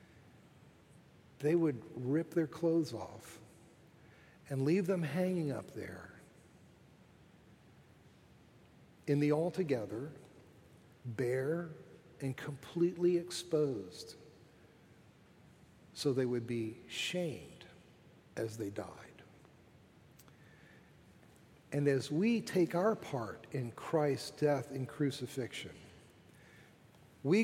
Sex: male